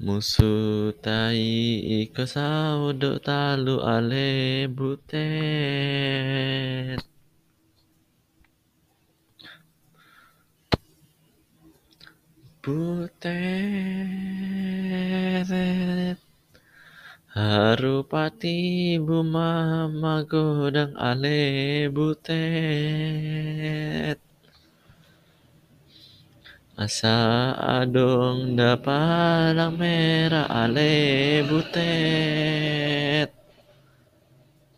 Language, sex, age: Indonesian, male, 20-39